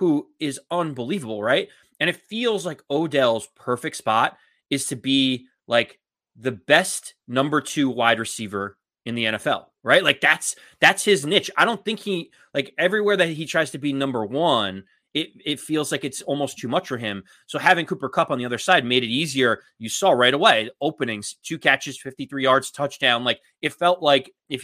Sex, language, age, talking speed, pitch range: male, English, 30-49, 190 wpm, 120-155 Hz